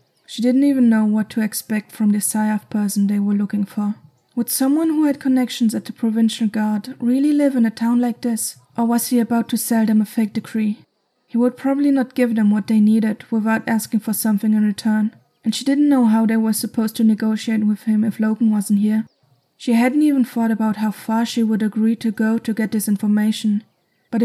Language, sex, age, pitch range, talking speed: English, female, 20-39, 215-235 Hz, 220 wpm